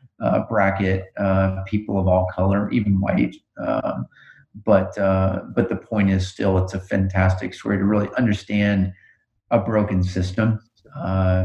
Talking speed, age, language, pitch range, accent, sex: 145 wpm, 30-49, English, 95-115 Hz, American, male